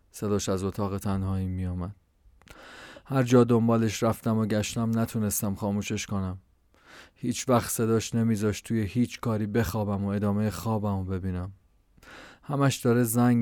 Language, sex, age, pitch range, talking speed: Persian, male, 30-49, 95-115 Hz, 135 wpm